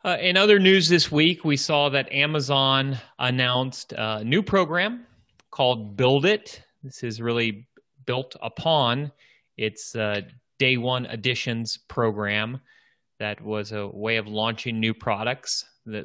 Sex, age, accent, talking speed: male, 30-49, American, 140 wpm